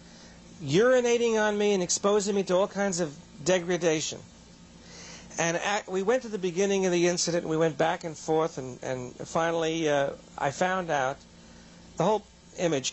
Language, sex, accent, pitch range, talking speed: English, male, American, 145-180 Hz, 165 wpm